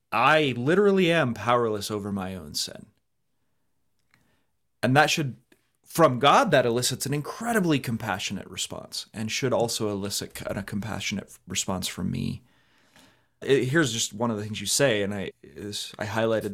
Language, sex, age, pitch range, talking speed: English, male, 30-49, 105-130 Hz, 160 wpm